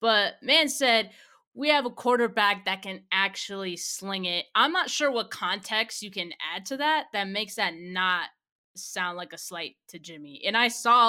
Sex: female